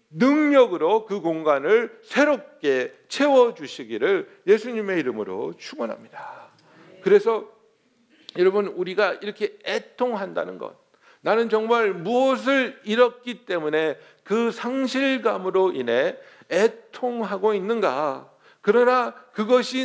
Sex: male